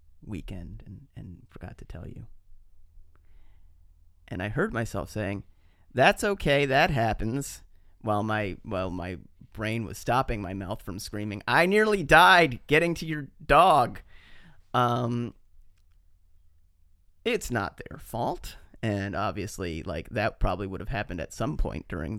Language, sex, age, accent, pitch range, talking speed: English, male, 30-49, American, 80-120 Hz, 140 wpm